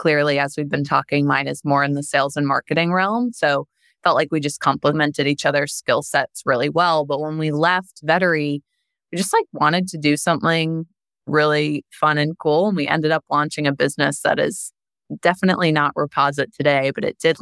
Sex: female